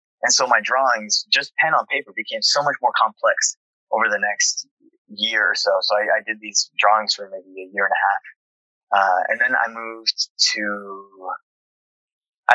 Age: 20-39